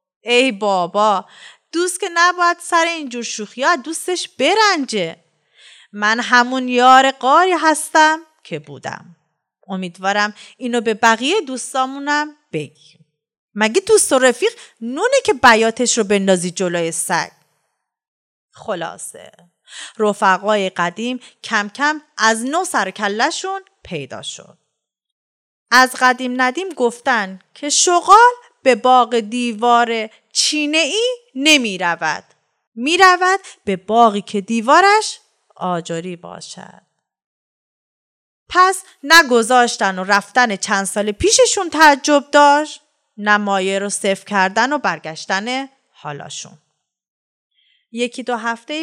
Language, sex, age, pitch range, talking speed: Persian, female, 30-49, 195-300 Hz, 105 wpm